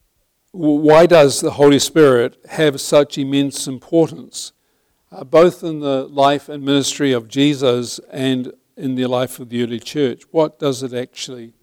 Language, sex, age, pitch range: English, male, 50-69, 130-155 Hz